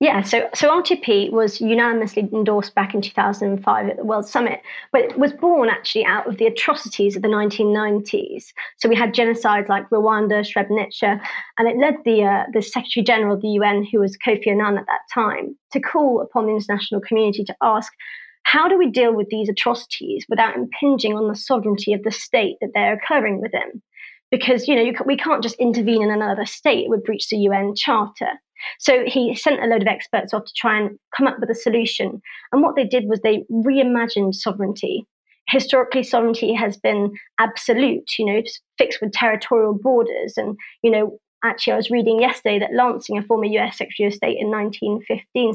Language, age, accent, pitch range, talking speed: English, 30-49, British, 210-255 Hz, 195 wpm